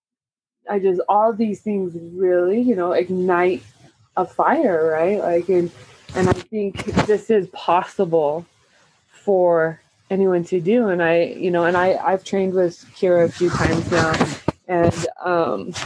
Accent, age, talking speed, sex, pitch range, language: American, 20-39, 150 wpm, female, 160-190 Hz, English